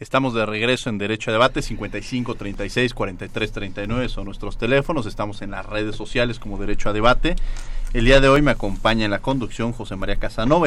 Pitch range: 105-120 Hz